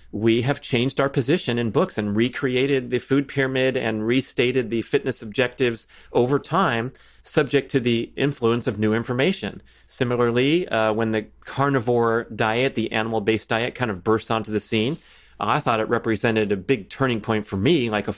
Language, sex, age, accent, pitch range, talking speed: English, male, 30-49, American, 110-135 Hz, 175 wpm